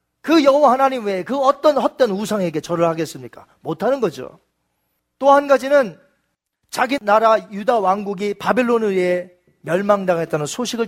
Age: 40-59